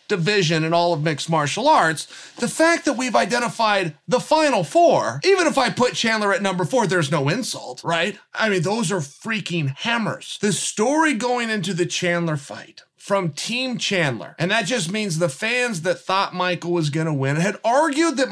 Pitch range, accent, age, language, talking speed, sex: 180-265 Hz, American, 30-49, English, 195 wpm, male